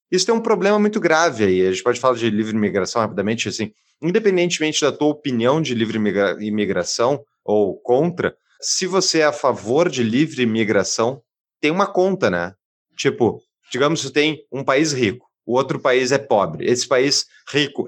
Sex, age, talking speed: male, 30-49, 175 wpm